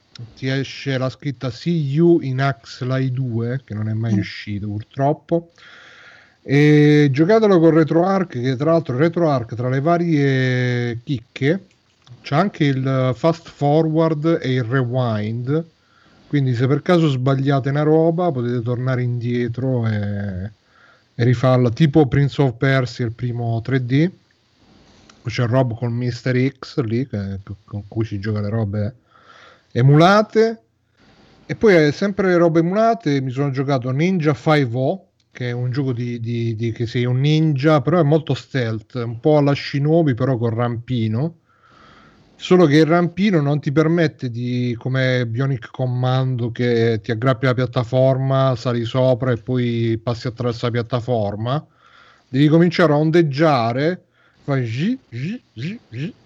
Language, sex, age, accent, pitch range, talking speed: Italian, male, 30-49, native, 120-155 Hz, 145 wpm